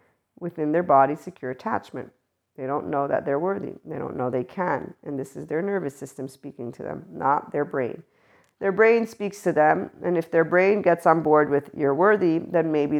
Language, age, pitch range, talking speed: English, 50-69, 140-170 Hz, 210 wpm